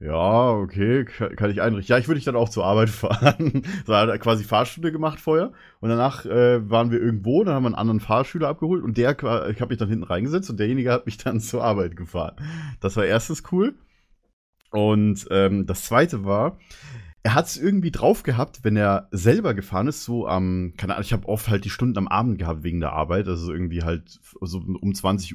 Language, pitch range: German, 100-130 Hz